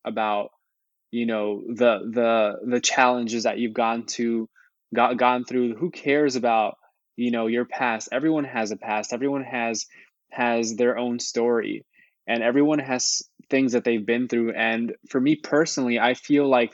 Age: 20-39